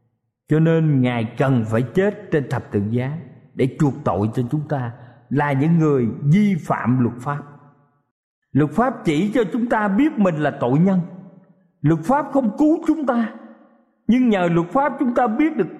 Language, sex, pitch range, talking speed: Vietnamese, male, 140-205 Hz, 180 wpm